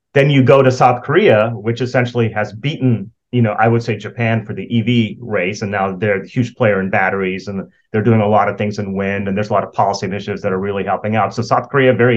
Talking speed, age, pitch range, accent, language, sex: 260 wpm, 30-49, 105-125 Hz, American, English, male